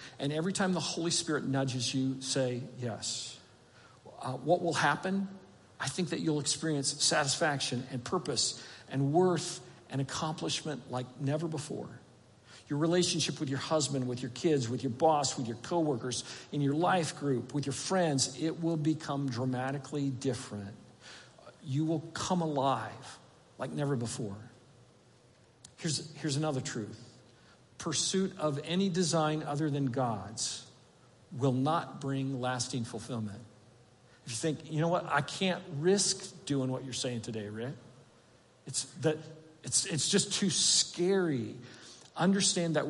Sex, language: male, English